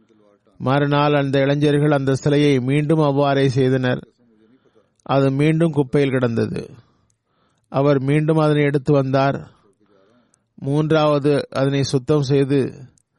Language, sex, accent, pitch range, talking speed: Tamil, male, native, 125-145 Hz, 95 wpm